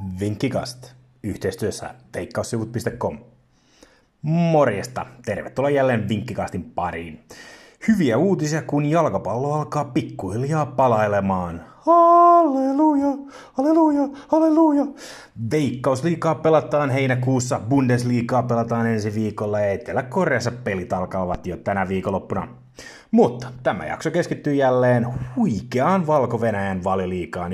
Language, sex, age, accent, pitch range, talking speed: Finnish, male, 30-49, native, 100-145 Hz, 85 wpm